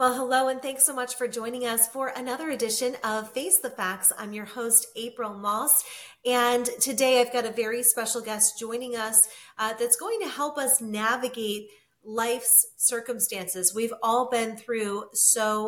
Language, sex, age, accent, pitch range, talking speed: English, female, 30-49, American, 210-250 Hz, 170 wpm